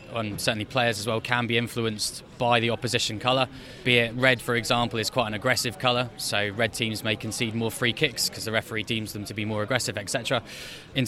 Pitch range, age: 115-130 Hz, 20-39